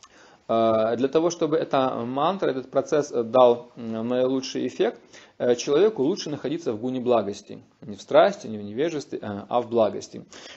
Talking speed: 140 wpm